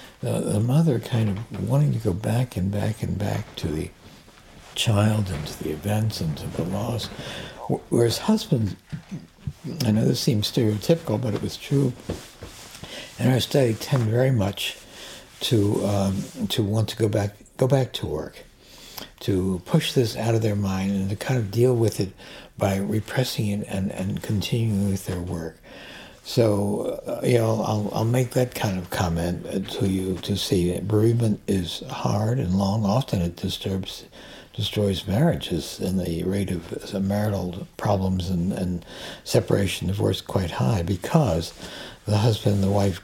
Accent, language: American, English